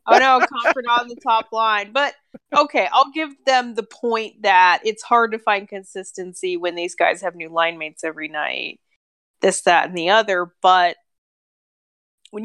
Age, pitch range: 20-39, 180-230 Hz